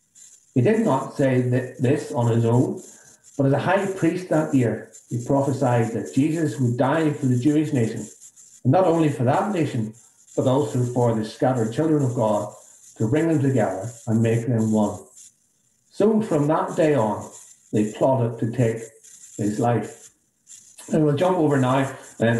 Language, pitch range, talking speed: English, 115-145 Hz, 170 wpm